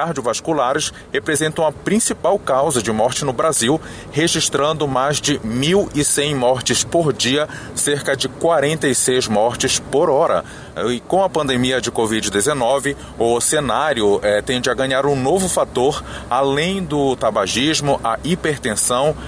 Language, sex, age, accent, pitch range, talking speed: Portuguese, male, 30-49, Brazilian, 110-145 Hz, 135 wpm